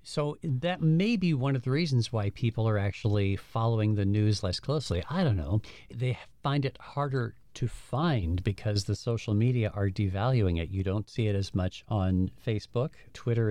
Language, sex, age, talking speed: English, male, 50-69, 185 wpm